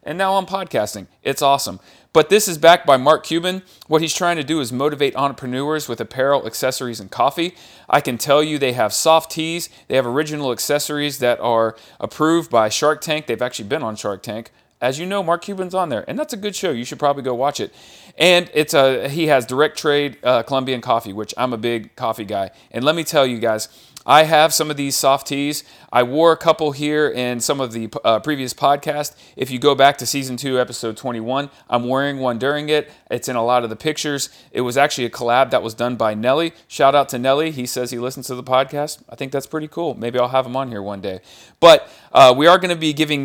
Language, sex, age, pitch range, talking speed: English, male, 40-59, 125-155 Hz, 240 wpm